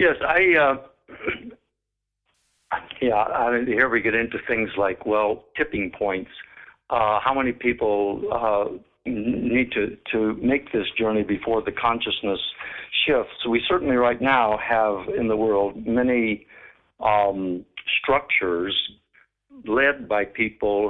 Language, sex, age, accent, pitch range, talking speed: English, male, 60-79, American, 105-125 Hz, 125 wpm